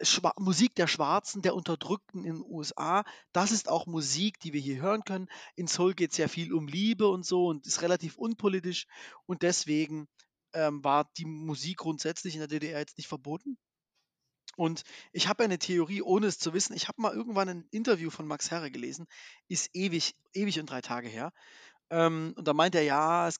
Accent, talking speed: German, 195 wpm